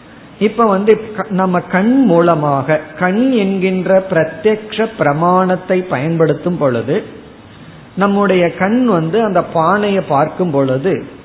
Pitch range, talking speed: 155-215 Hz, 95 wpm